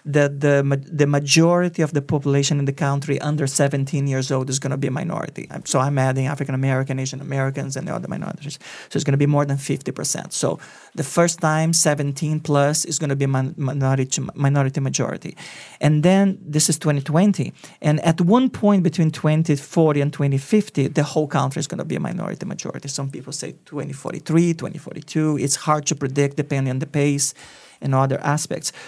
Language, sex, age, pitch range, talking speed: English, male, 40-59, 140-160 Hz, 185 wpm